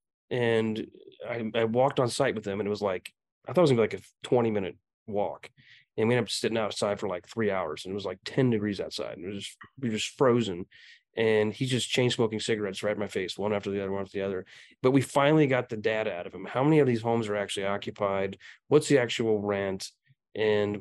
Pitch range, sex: 105-125 Hz, male